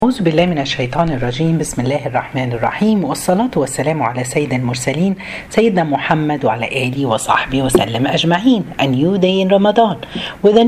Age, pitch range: 40-59, 135-220 Hz